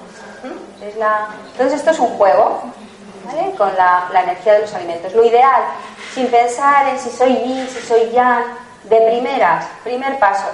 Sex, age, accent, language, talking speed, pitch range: female, 30-49, Spanish, Spanish, 175 wpm, 205-265 Hz